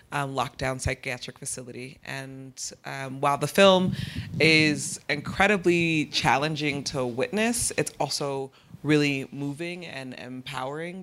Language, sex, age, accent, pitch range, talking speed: English, female, 30-49, American, 130-150 Hz, 110 wpm